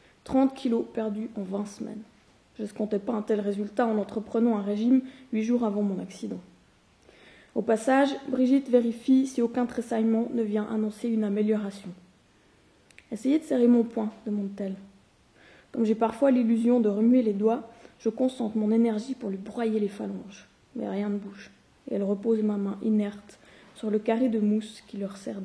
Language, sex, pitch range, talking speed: French, female, 215-245 Hz, 175 wpm